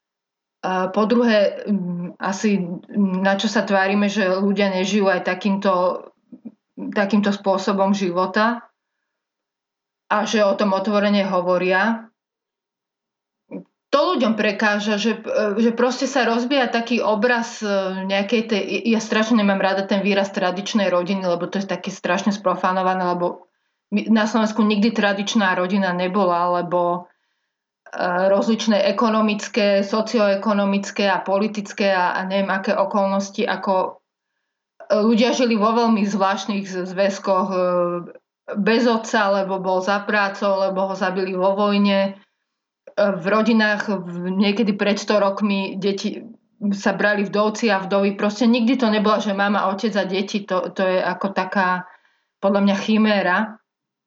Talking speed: 125 wpm